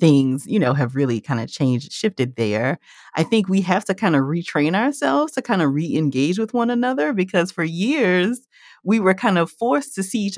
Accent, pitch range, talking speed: American, 150-230 Hz, 215 wpm